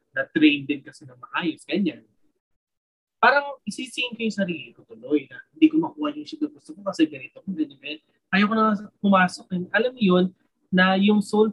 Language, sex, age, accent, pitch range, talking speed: English, male, 20-39, Filipino, 150-220 Hz, 195 wpm